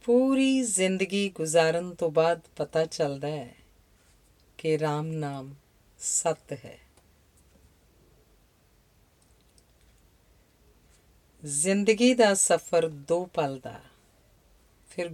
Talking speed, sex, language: 80 wpm, female, Punjabi